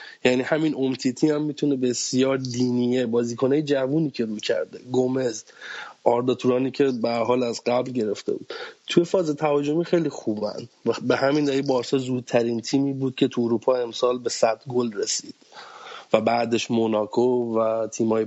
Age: 30-49